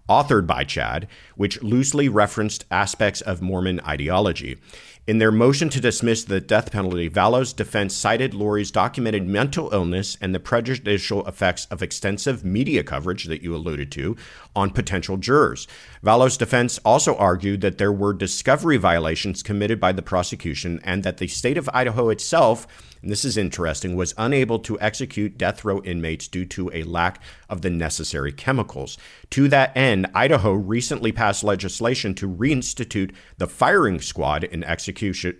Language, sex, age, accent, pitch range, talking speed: English, male, 50-69, American, 90-110 Hz, 160 wpm